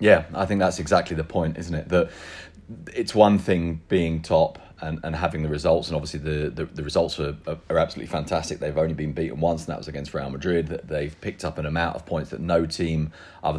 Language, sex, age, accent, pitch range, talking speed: English, male, 30-49, British, 80-100 Hz, 235 wpm